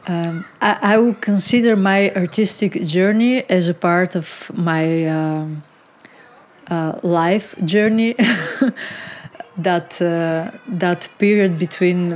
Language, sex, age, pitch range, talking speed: English, female, 30-49, 175-205 Hz, 110 wpm